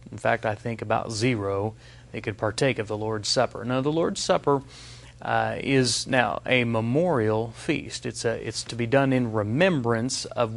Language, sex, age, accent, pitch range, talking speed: English, male, 40-59, American, 115-135 Hz, 180 wpm